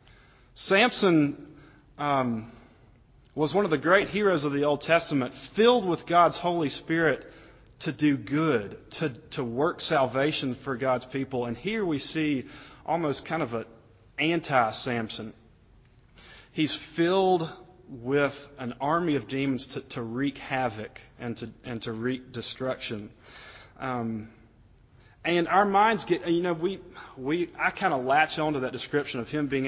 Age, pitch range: 40-59, 120-160 Hz